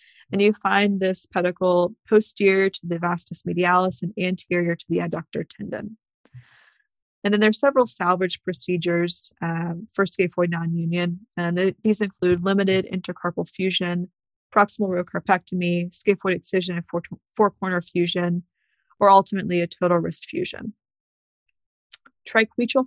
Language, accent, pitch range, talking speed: English, American, 175-205 Hz, 135 wpm